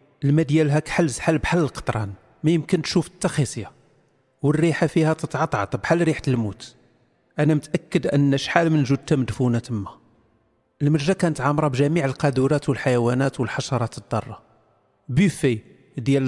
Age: 40-59